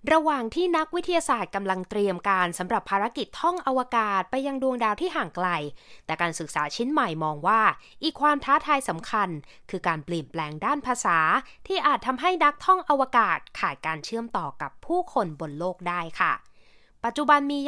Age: 20-39